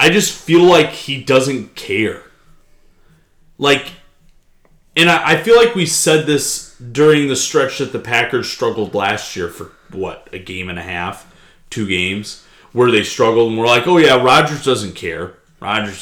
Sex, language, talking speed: male, English, 170 wpm